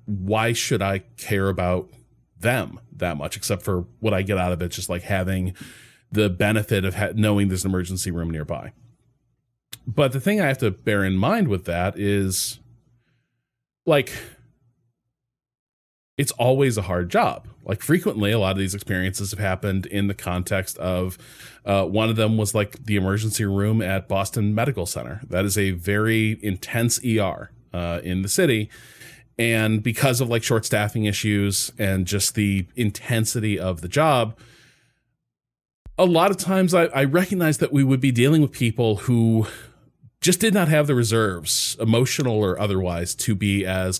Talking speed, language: 170 wpm, English